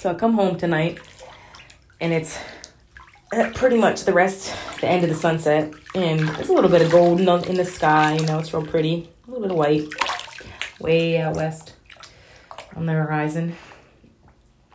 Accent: American